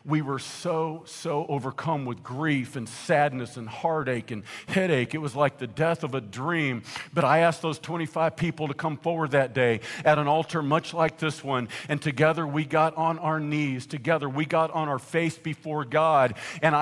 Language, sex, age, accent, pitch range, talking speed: English, male, 50-69, American, 150-185 Hz, 195 wpm